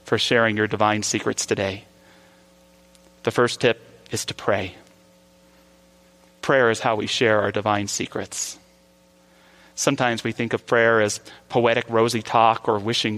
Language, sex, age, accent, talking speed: English, male, 30-49, American, 140 wpm